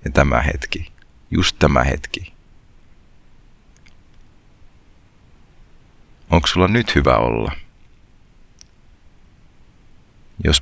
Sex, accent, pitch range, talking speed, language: male, native, 70-85 Hz, 70 wpm, Finnish